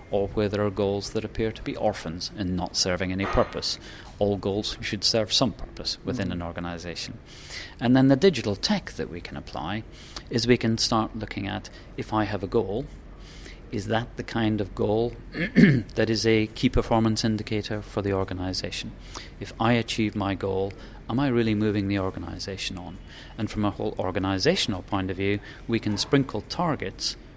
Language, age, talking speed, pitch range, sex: English, 40-59, 180 wpm, 95-115 Hz, male